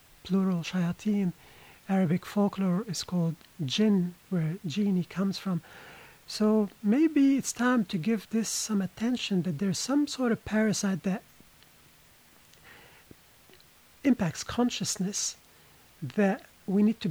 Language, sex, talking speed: English, male, 115 wpm